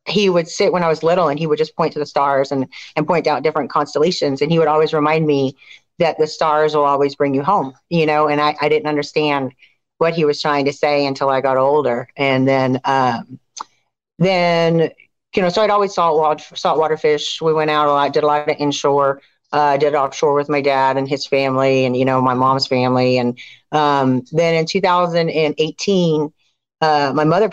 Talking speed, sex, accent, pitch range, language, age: 220 wpm, female, American, 140-165 Hz, English, 40-59